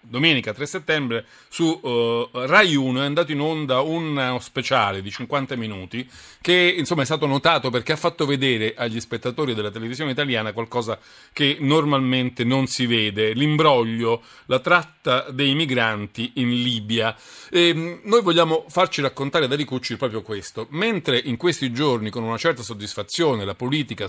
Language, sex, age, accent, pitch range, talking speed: Italian, male, 40-59, native, 110-145 Hz, 150 wpm